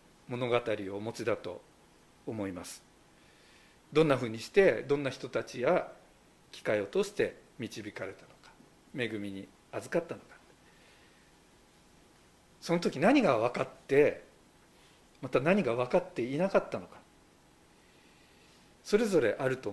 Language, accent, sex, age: Japanese, native, male, 50-69